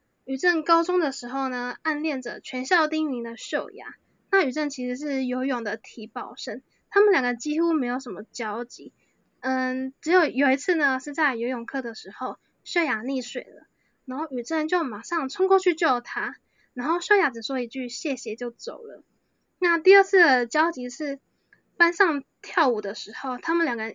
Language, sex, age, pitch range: Chinese, female, 10-29, 245-325 Hz